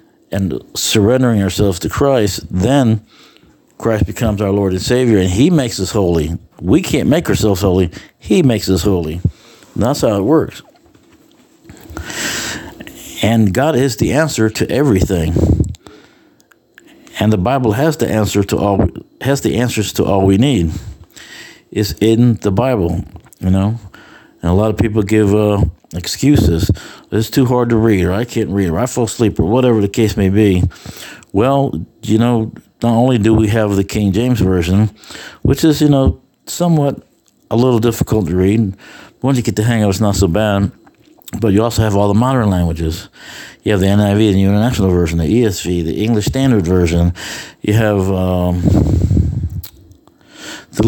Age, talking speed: 60-79, 165 wpm